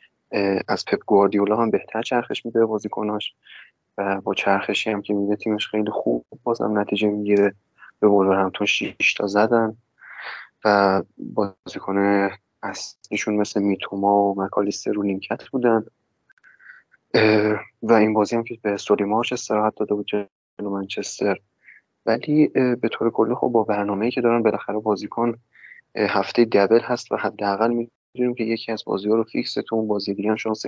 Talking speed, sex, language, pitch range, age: 145 wpm, male, Persian, 100-115 Hz, 20-39